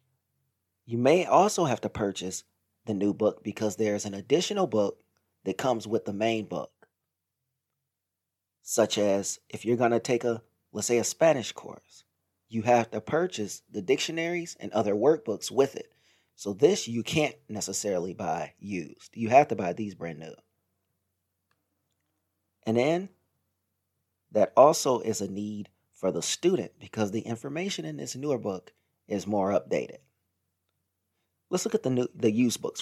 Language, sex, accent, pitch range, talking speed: English, male, American, 95-130 Hz, 155 wpm